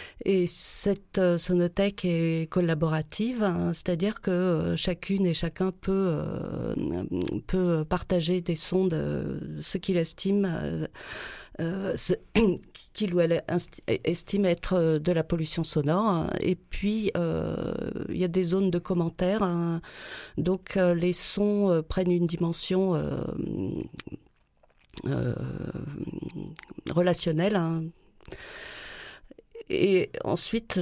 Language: French